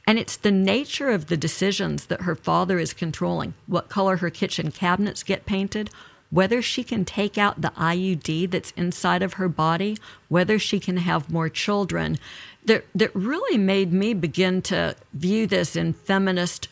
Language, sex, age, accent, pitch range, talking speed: English, female, 50-69, American, 175-215 Hz, 170 wpm